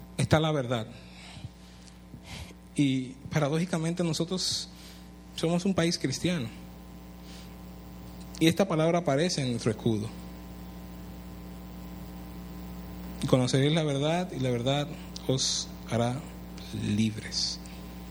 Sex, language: male, Spanish